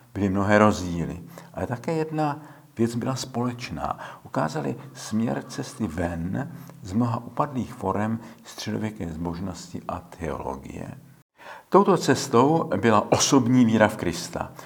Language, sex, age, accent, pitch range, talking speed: Czech, male, 50-69, native, 90-125 Hz, 115 wpm